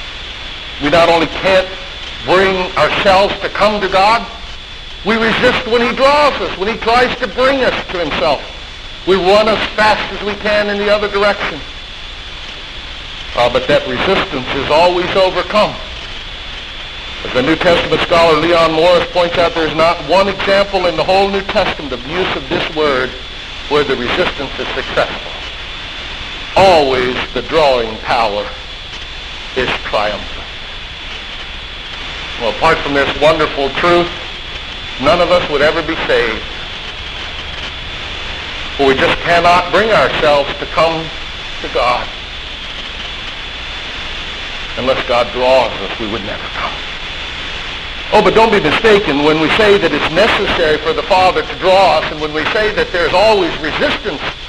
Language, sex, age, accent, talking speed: English, male, 50-69, American, 145 wpm